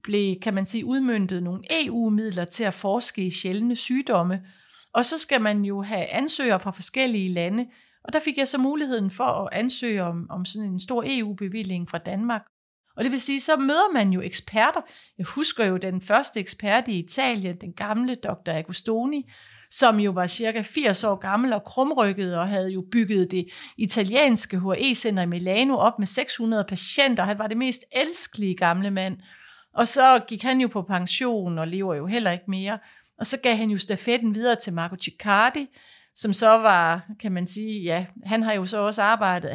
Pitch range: 190-250 Hz